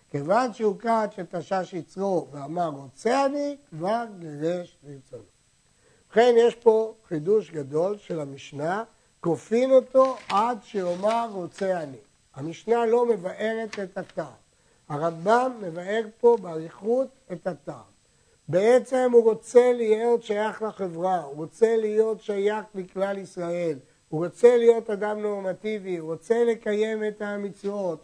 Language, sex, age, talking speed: Hebrew, male, 60-79, 125 wpm